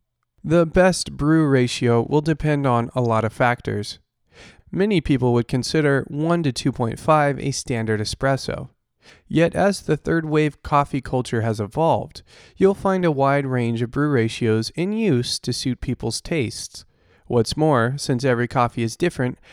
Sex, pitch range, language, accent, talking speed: male, 120-155 Hz, English, American, 155 wpm